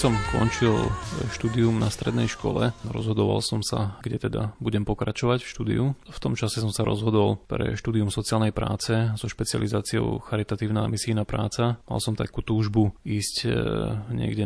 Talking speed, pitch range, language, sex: 150 wpm, 105-115 Hz, Slovak, male